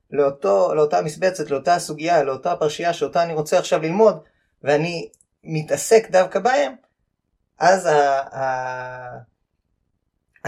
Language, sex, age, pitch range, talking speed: Hebrew, male, 20-39, 130-180 Hz, 115 wpm